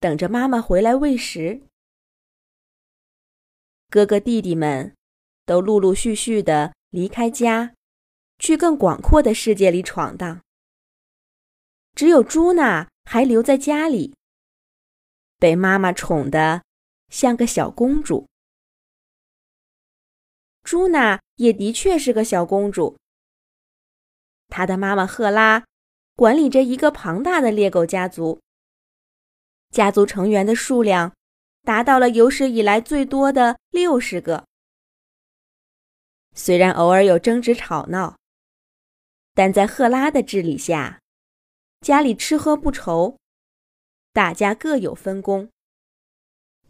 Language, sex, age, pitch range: Chinese, female, 20-39, 180-260 Hz